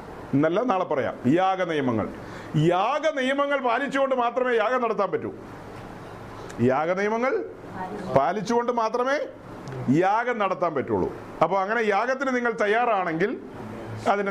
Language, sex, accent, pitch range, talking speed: Malayalam, male, native, 180-240 Hz, 110 wpm